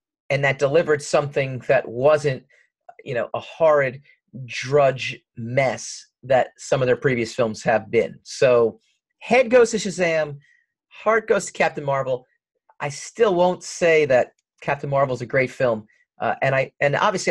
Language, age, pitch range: English, 40-59, 130-185 Hz